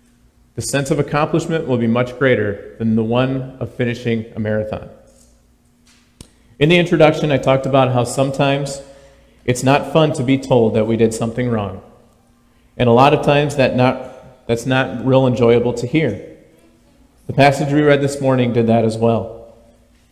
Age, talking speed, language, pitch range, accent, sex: 40-59, 165 wpm, English, 110-140 Hz, American, male